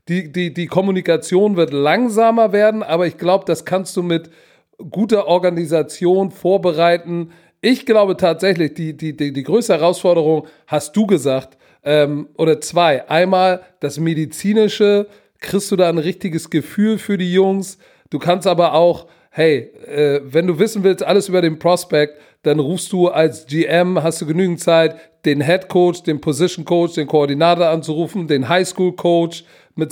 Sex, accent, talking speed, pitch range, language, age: male, German, 160 wpm, 165-195 Hz, German, 40-59